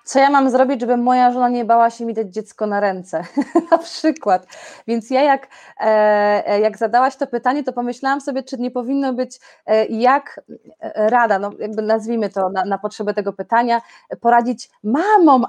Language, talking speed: Polish, 180 wpm